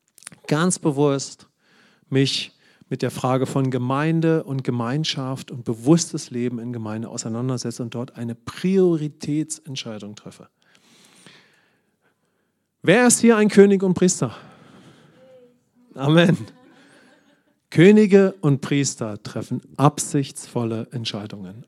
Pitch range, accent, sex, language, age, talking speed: 120-160 Hz, German, male, English, 40-59, 95 wpm